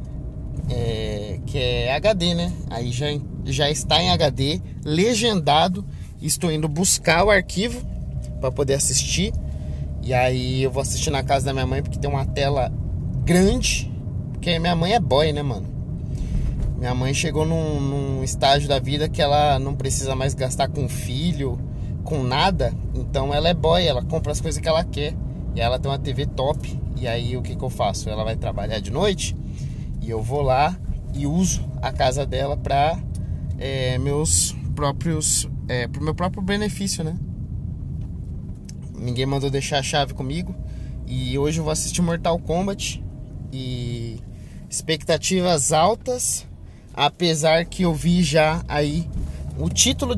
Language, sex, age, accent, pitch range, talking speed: Portuguese, male, 20-39, Brazilian, 115-155 Hz, 155 wpm